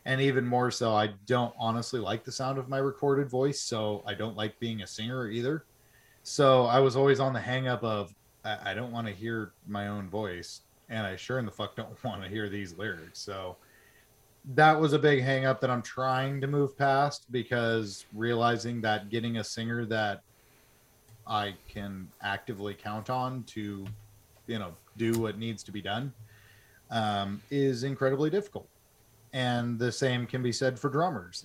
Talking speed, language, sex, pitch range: 180 wpm, English, male, 110-130 Hz